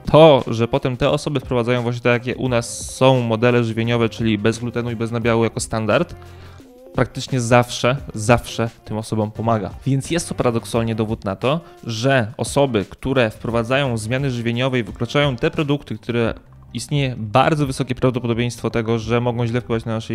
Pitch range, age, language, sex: 115-130 Hz, 20-39, Polish, male